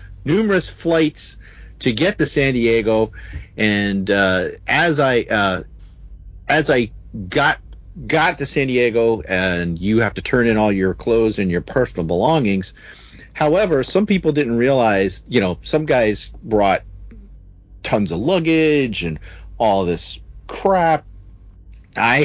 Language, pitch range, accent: English, 90-125 Hz, American